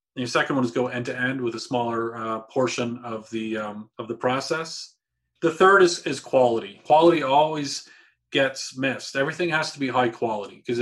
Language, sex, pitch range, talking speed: English, male, 115-135 Hz, 195 wpm